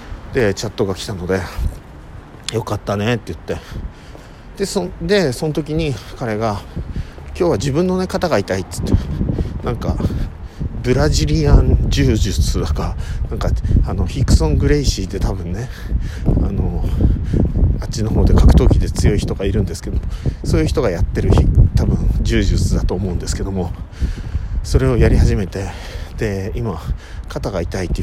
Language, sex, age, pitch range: Japanese, male, 50-69, 85-115 Hz